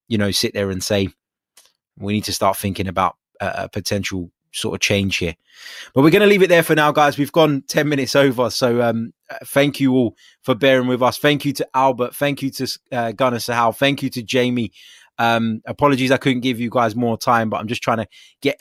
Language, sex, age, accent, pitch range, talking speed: English, male, 20-39, British, 105-135 Hz, 230 wpm